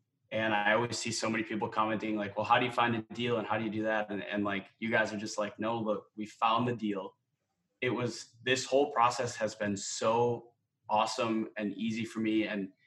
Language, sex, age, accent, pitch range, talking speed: English, male, 20-39, American, 105-120 Hz, 235 wpm